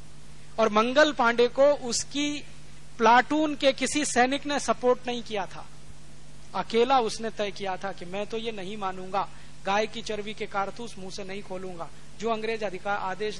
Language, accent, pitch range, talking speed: Hindi, native, 195-255 Hz, 170 wpm